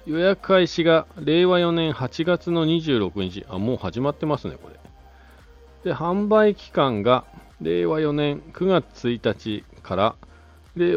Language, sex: Japanese, male